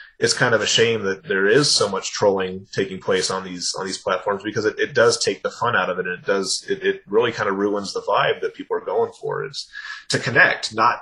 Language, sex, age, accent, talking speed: English, male, 30-49, American, 260 wpm